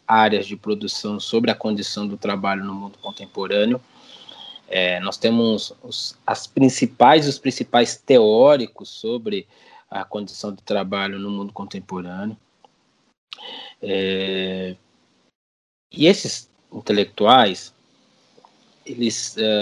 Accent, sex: Brazilian, male